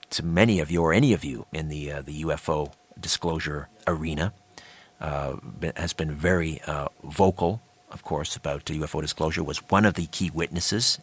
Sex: male